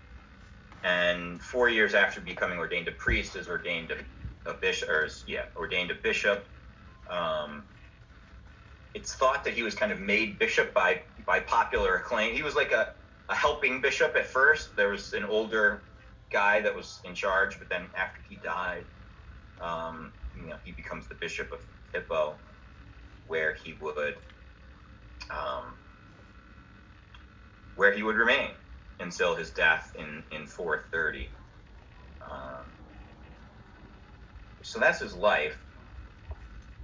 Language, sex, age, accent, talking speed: English, male, 30-49, American, 135 wpm